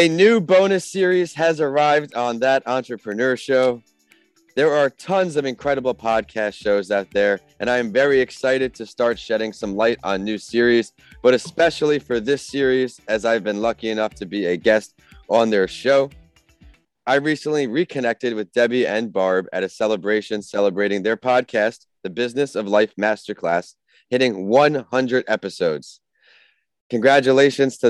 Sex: male